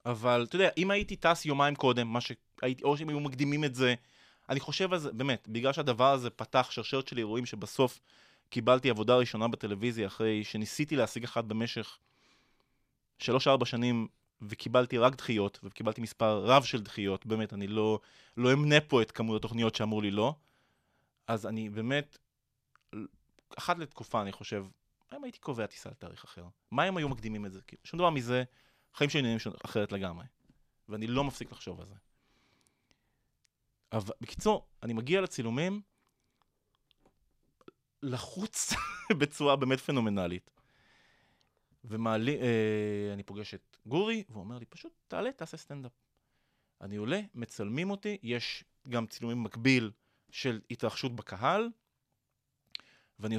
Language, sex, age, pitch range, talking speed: Hebrew, male, 20-39, 110-140 Hz, 140 wpm